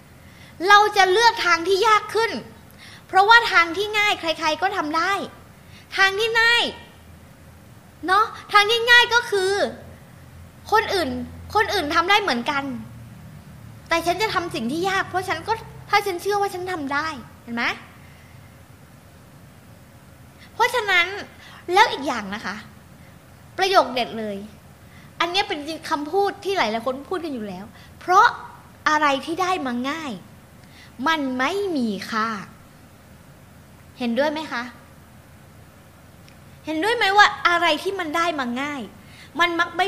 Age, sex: 20-39, female